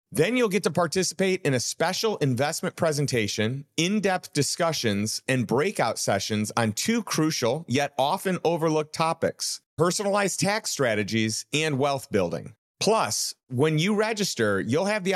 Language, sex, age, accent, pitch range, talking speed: English, male, 40-59, American, 125-185 Hz, 140 wpm